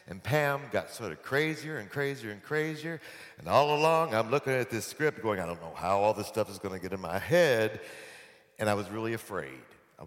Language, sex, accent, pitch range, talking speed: English, male, American, 85-140 Hz, 230 wpm